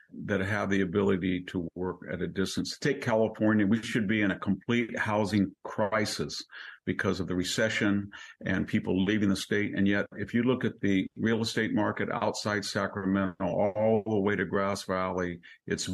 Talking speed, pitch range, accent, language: 175 wpm, 95-110 Hz, American, English